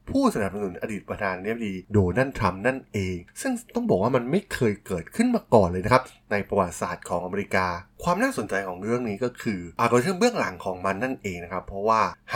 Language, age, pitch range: Thai, 20-39, 95-150 Hz